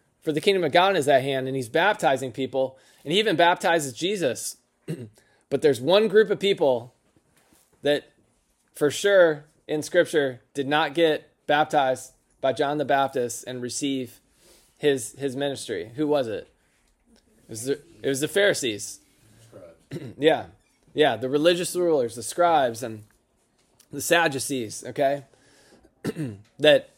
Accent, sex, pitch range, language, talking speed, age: American, male, 135-180 Hz, English, 135 wpm, 20-39